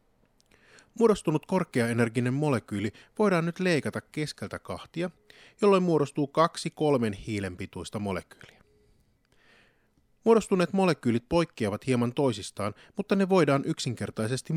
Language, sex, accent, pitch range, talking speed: Finnish, male, native, 100-140 Hz, 100 wpm